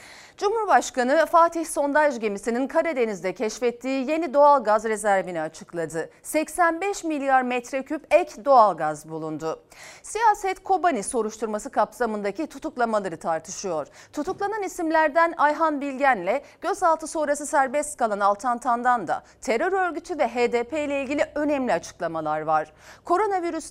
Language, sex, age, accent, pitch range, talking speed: Turkish, female, 40-59, native, 205-300 Hz, 105 wpm